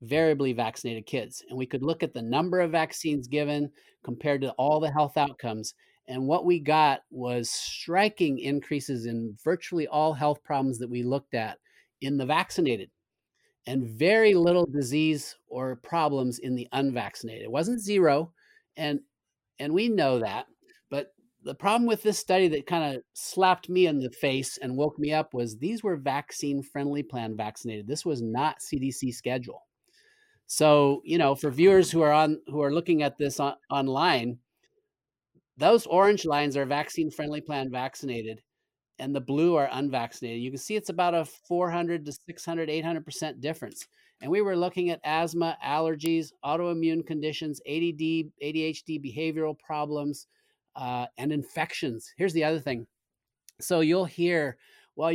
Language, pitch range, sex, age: English, 130-165 Hz, male, 30-49